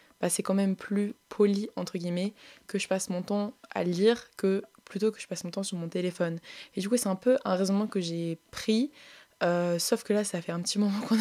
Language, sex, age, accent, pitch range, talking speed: French, female, 20-39, French, 175-205 Hz, 245 wpm